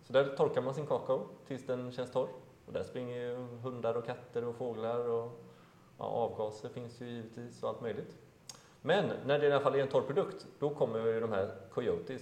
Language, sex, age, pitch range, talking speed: Swedish, male, 30-49, 115-140 Hz, 215 wpm